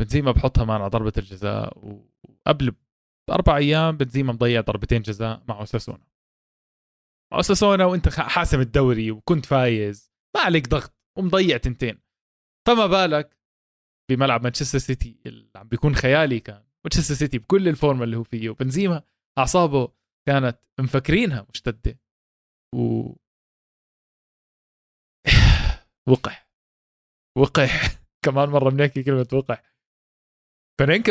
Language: Arabic